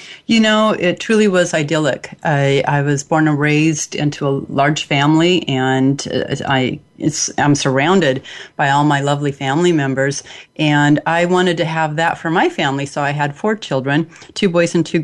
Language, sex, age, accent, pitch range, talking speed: English, female, 30-49, American, 145-175 Hz, 180 wpm